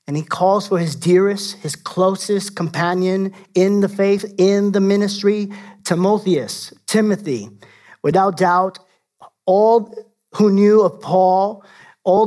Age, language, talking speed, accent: 50-69, English, 120 wpm, American